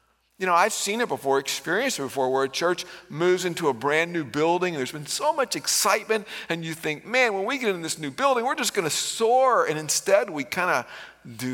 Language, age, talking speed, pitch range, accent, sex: English, 50-69, 240 wpm, 120-165 Hz, American, male